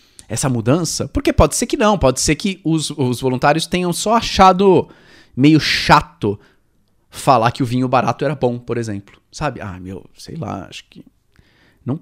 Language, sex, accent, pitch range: Portuguese, male, Brazilian, 115-165 Hz